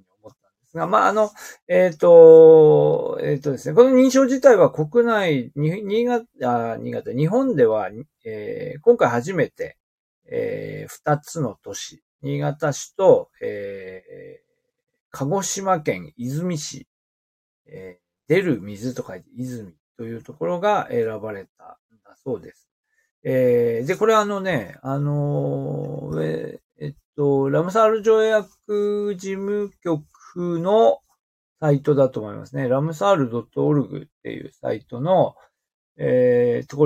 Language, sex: Japanese, male